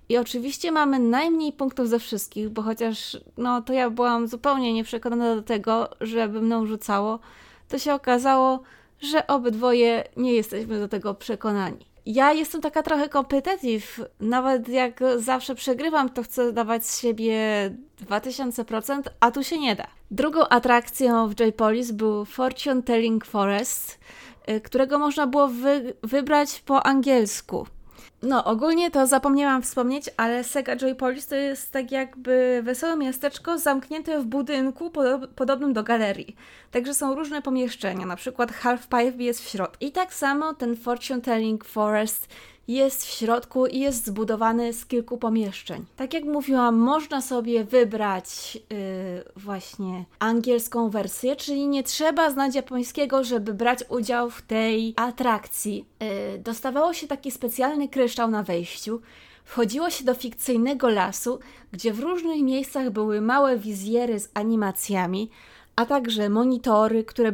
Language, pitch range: Polish, 225-270 Hz